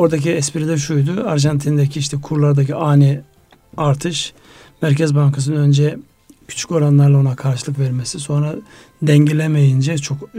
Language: Turkish